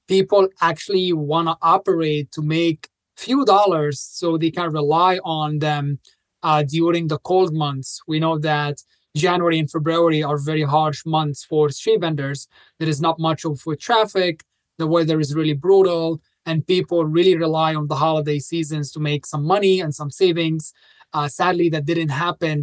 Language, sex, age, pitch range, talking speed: English, male, 20-39, 150-170 Hz, 170 wpm